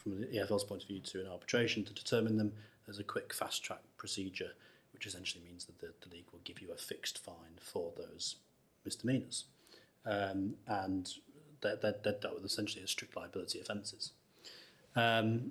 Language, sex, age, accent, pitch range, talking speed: English, male, 30-49, British, 100-115 Hz, 175 wpm